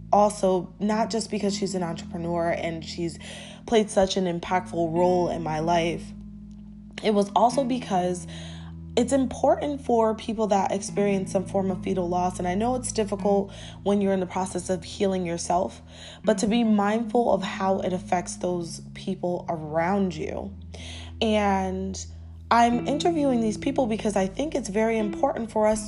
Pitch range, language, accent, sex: 175-220 Hz, English, American, female